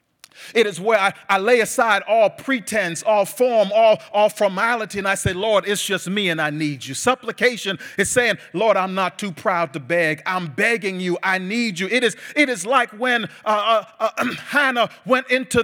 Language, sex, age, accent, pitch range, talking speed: English, male, 40-59, American, 200-250 Hz, 205 wpm